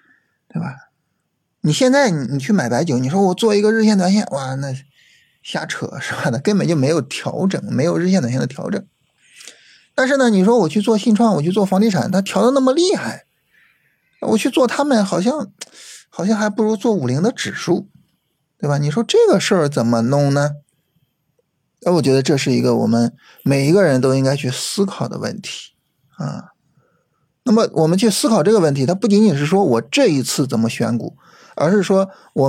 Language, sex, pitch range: Chinese, male, 140-215 Hz